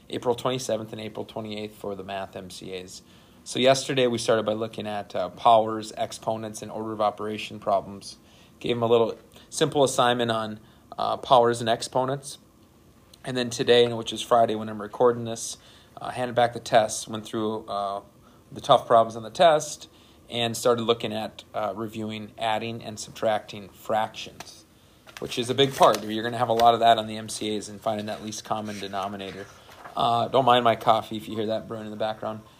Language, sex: English, male